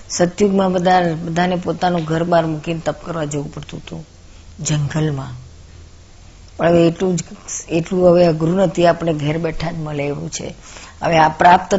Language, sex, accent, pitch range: Gujarati, female, native, 150-170 Hz